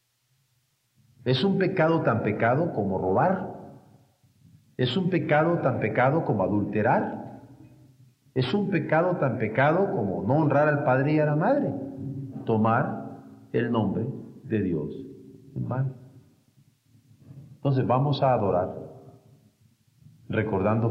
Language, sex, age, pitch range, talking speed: Spanish, male, 50-69, 110-140 Hz, 115 wpm